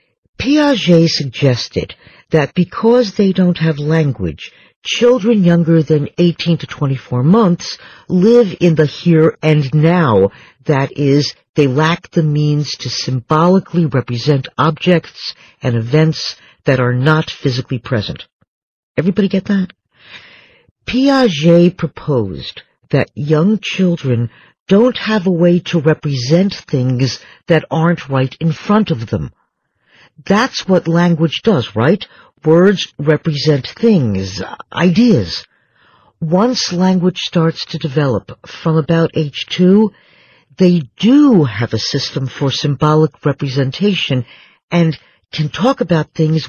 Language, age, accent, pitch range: Chinese, 50-69, American, 145-185 Hz